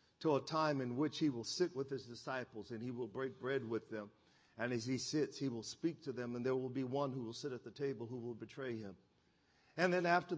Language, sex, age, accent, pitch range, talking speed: English, male, 50-69, American, 135-190 Hz, 260 wpm